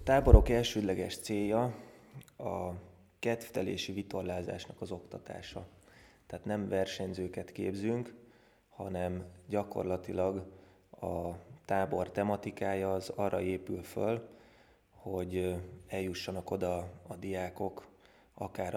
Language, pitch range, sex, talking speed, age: Hungarian, 90-105 Hz, male, 90 wpm, 20-39